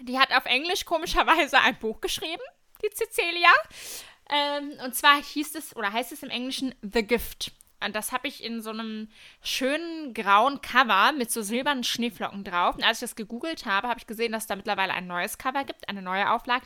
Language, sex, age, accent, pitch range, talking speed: German, female, 20-39, German, 225-290 Hz, 205 wpm